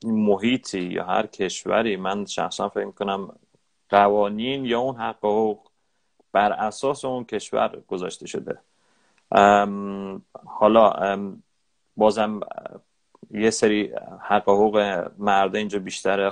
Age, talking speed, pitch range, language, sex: 30-49, 105 wpm, 95-110 Hz, Persian, male